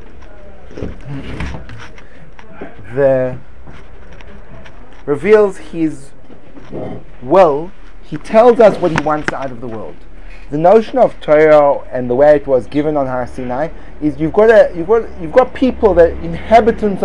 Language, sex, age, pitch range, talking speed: English, male, 30-49, 135-180 Hz, 135 wpm